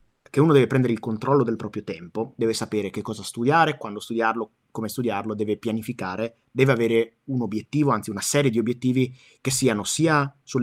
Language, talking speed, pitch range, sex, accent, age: Italian, 185 wpm, 110-135 Hz, male, native, 30-49